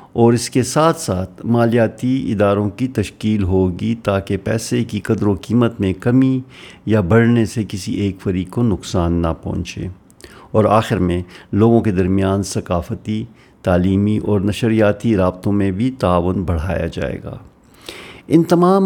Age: 50-69